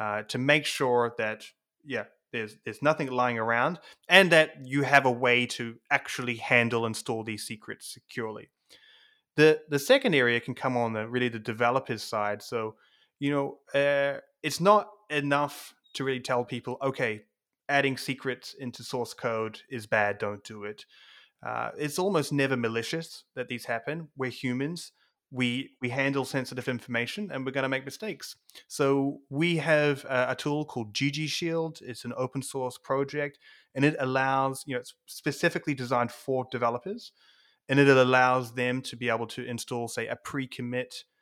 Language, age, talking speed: English, 30-49, 170 wpm